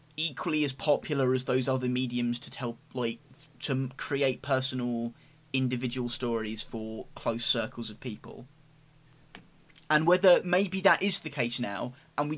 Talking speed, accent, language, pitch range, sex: 145 wpm, British, English, 120-155 Hz, male